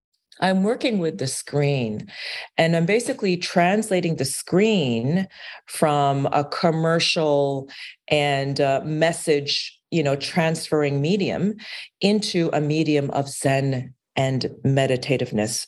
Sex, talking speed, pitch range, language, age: female, 105 wpm, 130-165 Hz, English, 40-59